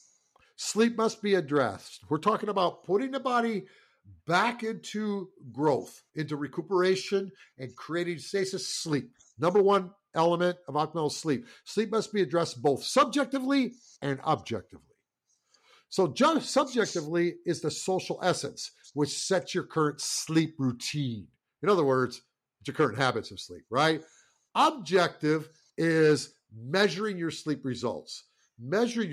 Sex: male